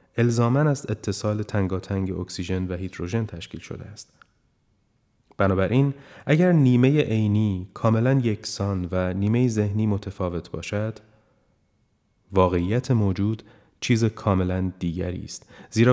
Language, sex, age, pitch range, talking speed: Persian, male, 30-49, 95-120 Hz, 105 wpm